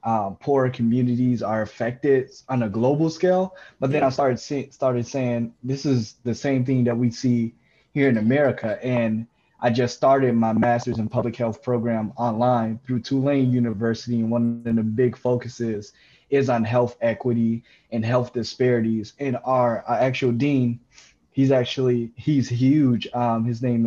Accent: American